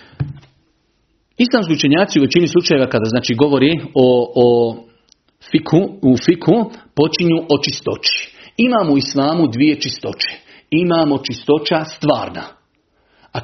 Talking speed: 110 wpm